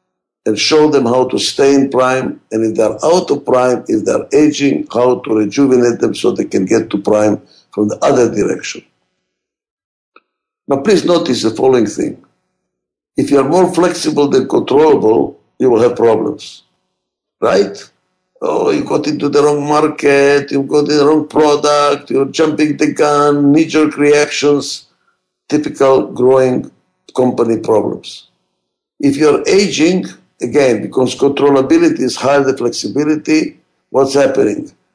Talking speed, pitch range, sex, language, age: 145 wpm, 125-155 Hz, male, English, 60-79